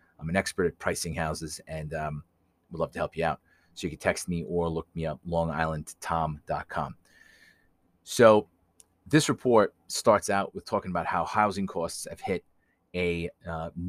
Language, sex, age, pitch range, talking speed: English, male, 30-49, 85-95 Hz, 170 wpm